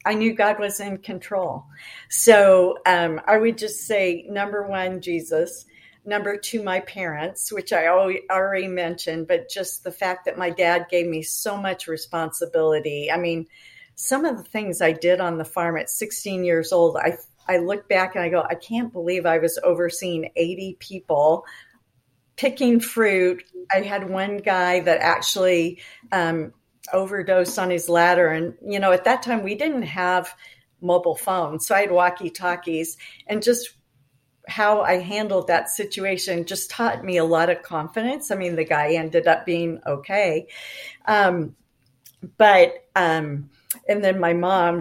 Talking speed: 165 wpm